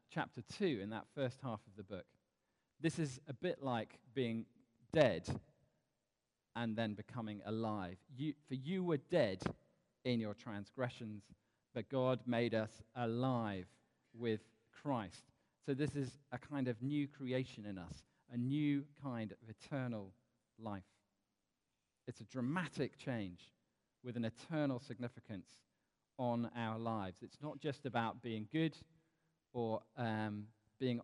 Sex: male